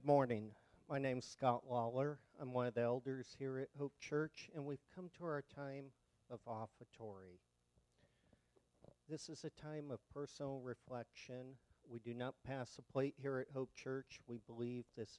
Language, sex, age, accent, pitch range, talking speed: English, male, 50-69, American, 110-135 Hz, 175 wpm